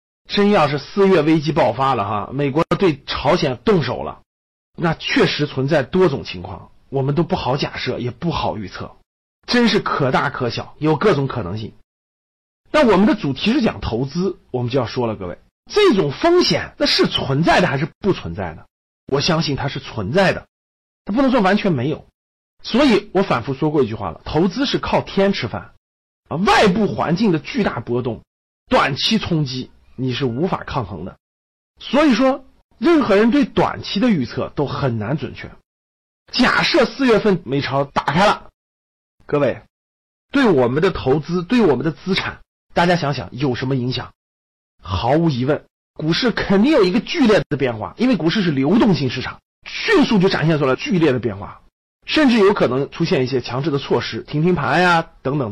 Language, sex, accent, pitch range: Chinese, male, native, 120-195 Hz